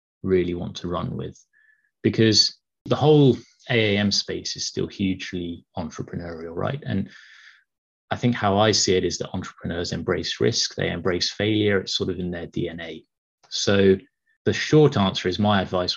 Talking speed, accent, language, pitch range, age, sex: 160 wpm, British, English, 90-115 Hz, 30-49, male